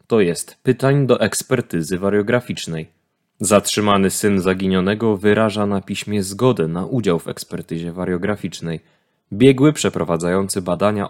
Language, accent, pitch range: Polish, native, 90-110 Hz